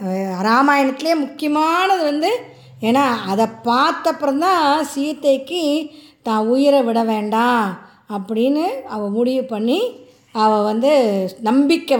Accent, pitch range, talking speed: native, 220-295 Hz, 90 wpm